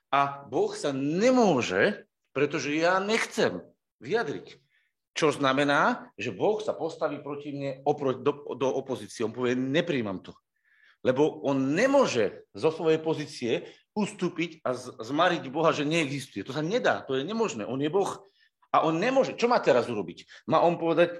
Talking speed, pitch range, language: 160 wpm, 140-185 Hz, Slovak